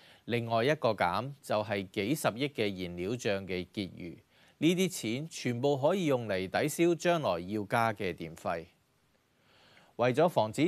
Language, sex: Chinese, male